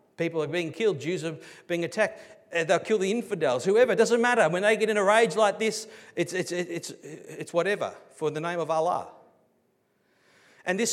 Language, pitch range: English, 170-245 Hz